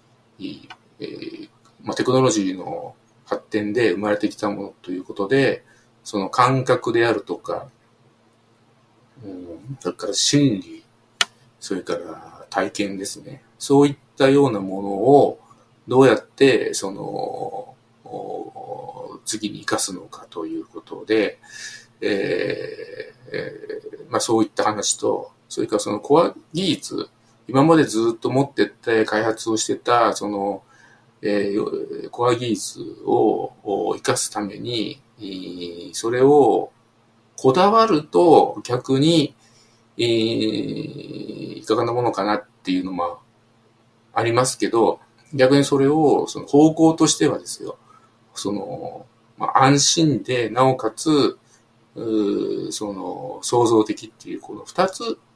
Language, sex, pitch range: English, male, 115-180 Hz